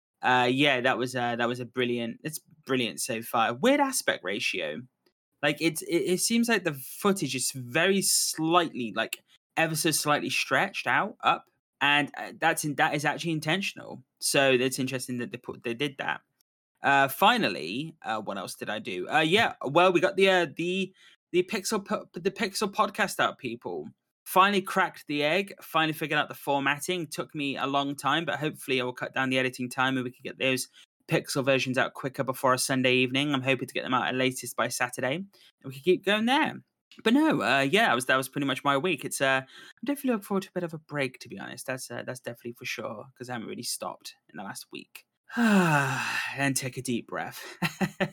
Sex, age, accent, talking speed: male, 20-39, British, 215 wpm